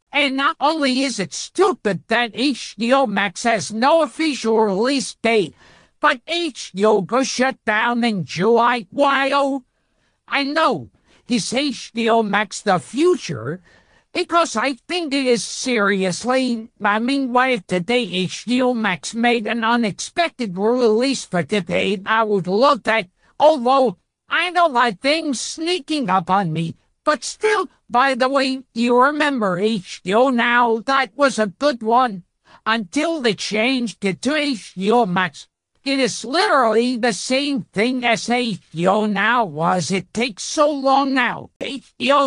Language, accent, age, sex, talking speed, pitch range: English, American, 60-79, male, 140 wpm, 215-270 Hz